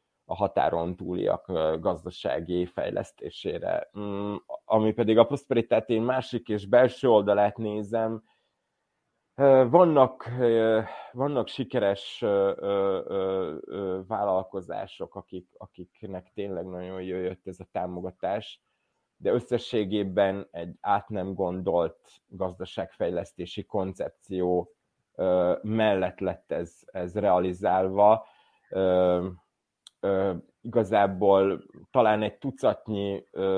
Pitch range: 90-110 Hz